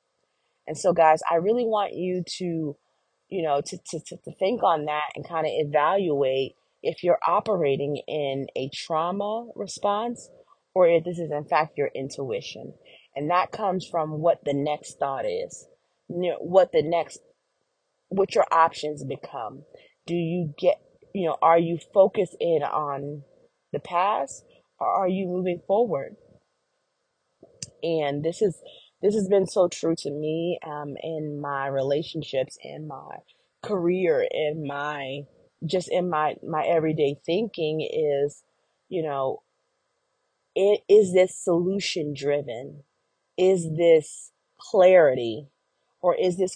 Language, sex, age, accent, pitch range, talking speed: English, female, 30-49, American, 145-195 Hz, 135 wpm